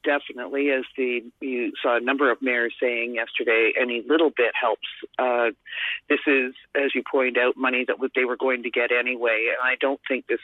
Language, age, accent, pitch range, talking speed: English, 50-69, American, 125-170 Hz, 200 wpm